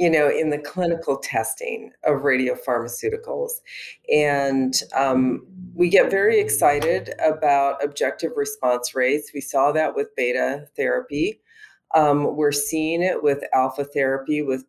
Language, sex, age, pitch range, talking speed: English, female, 40-59, 140-185 Hz, 130 wpm